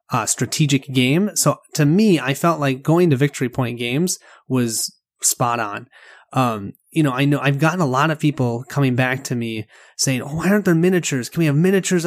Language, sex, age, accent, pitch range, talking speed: English, male, 30-49, American, 135-175 Hz, 210 wpm